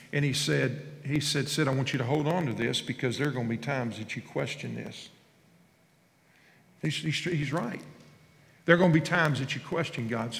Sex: male